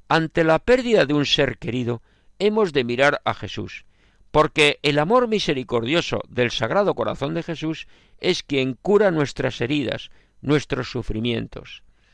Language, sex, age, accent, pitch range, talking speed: Spanish, male, 50-69, Spanish, 120-175 Hz, 140 wpm